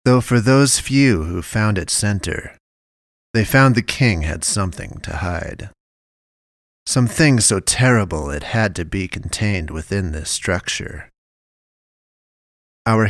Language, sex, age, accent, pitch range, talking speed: English, male, 30-49, American, 75-110 Hz, 130 wpm